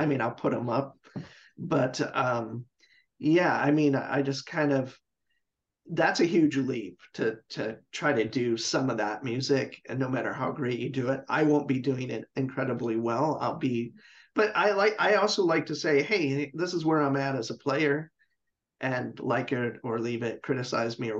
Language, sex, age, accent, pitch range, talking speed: English, male, 40-59, American, 125-150 Hz, 200 wpm